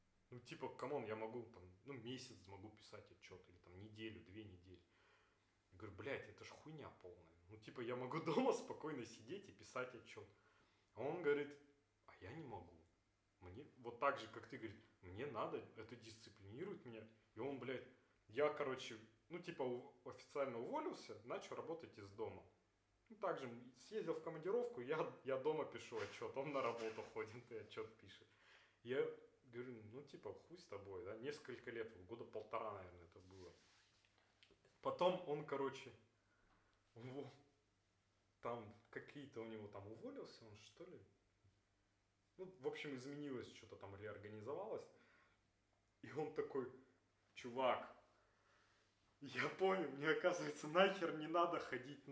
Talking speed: 150 wpm